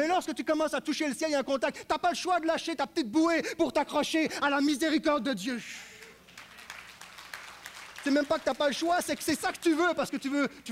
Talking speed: 285 wpm